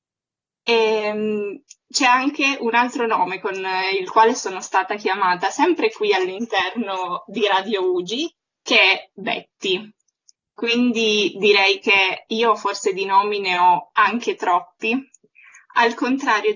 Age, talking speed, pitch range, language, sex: 20-39, 125 wpm, 195-260 Hz, Italian, female